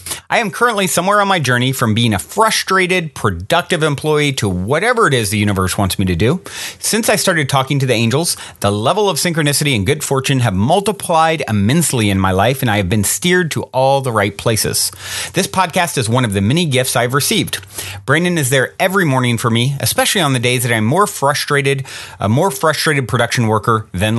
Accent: American